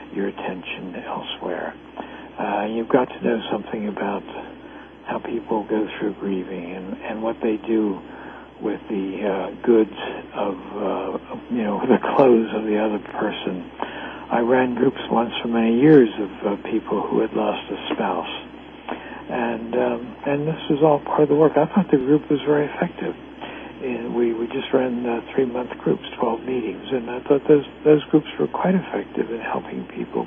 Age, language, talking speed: 60-79, English, 175 wpm